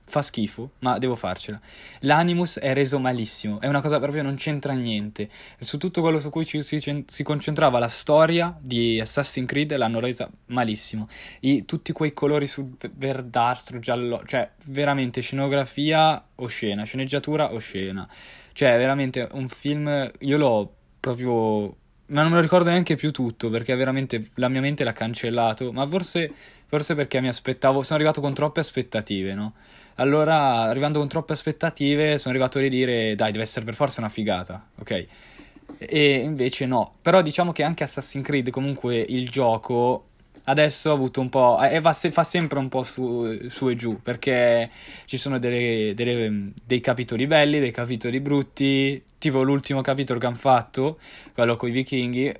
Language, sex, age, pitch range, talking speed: Italian, male, 10-29, 120-145 Hz, 170 wpm